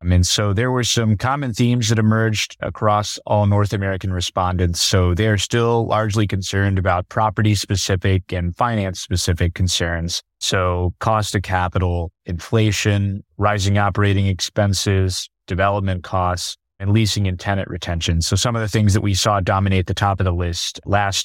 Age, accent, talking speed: 30-49, American, 155 wpm